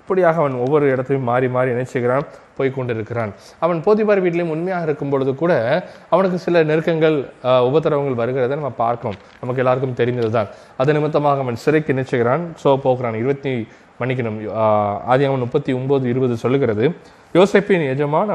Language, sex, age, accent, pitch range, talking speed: Tamil, male, 20-39, native, 120-150 Hz, 115 wpm